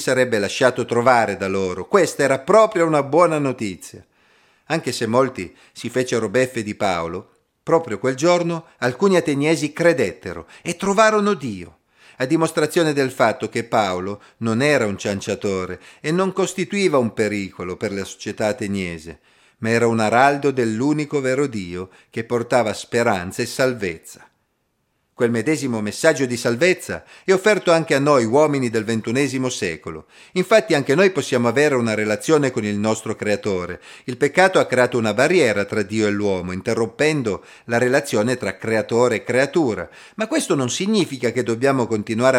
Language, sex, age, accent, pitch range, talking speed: Italian, male, 40-59, native, 110-145 Hz, 155 wpm